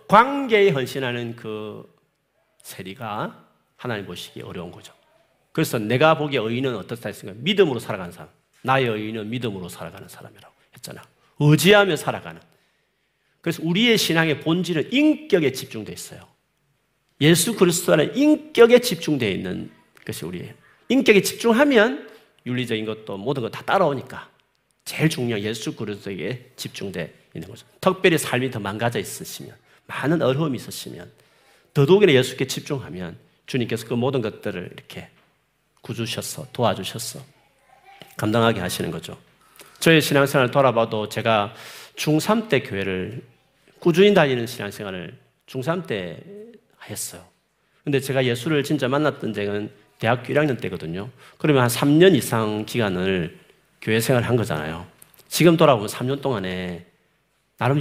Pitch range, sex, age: 110-165 Hz, male, 40-59